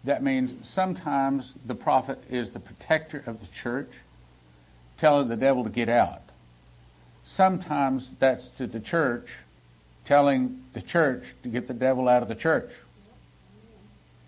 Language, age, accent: English, 60-79, American